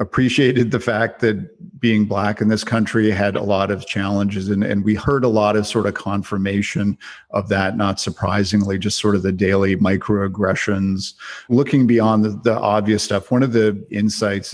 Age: 50-69